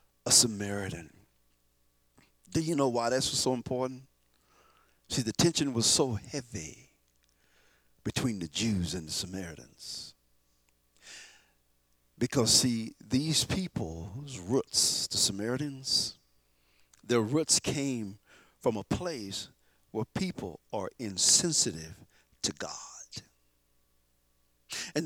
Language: English